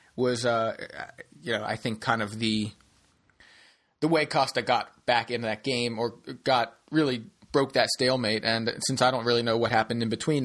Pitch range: 115-140 Hz